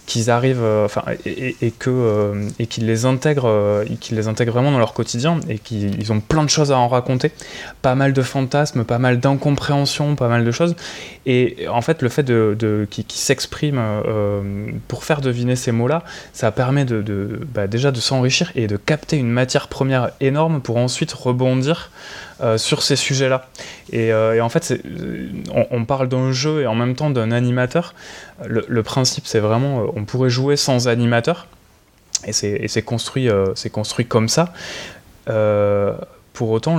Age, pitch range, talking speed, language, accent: 20-39, 115-140 Hz, 175 wpm, French, French